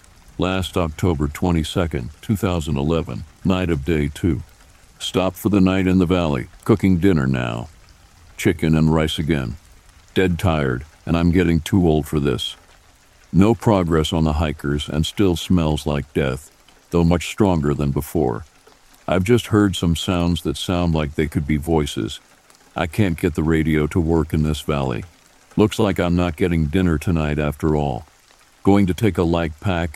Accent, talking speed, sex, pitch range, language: American, 165 wpm, male, 75-95 Hz, English